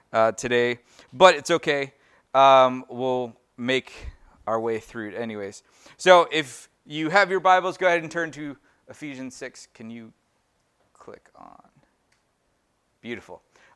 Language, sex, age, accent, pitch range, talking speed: English, male, 20-39, American, 115-145 Hz, 135 wpm